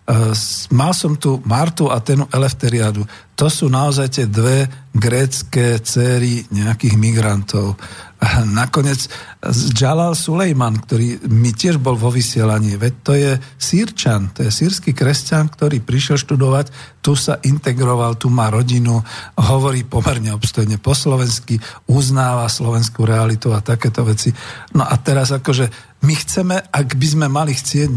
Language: Slovak